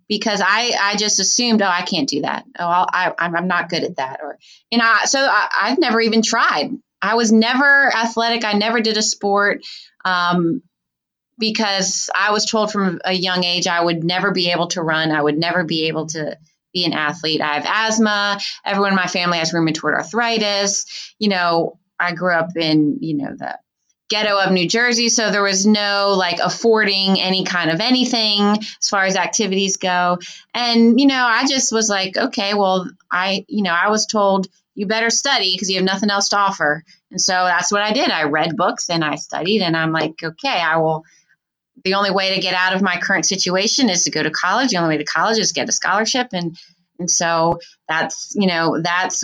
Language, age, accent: English, 20-39, American